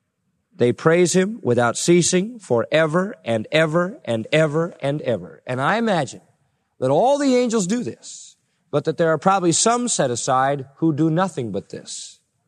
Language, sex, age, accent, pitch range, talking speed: English, male, 40-59, American, 150-205 Hz, 165 wpm